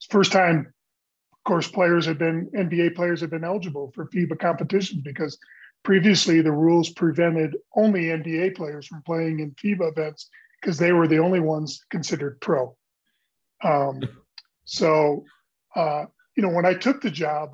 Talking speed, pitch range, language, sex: 155 wpm, 155-180 Hz, English, male